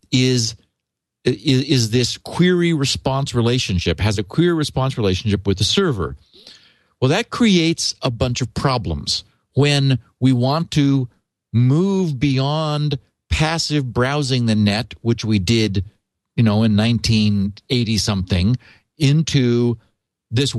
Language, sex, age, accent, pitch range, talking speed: English, male, 50-69, American, 110-145 Hz, 120 wpm